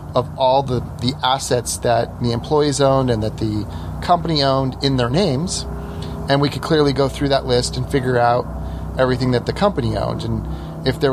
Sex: male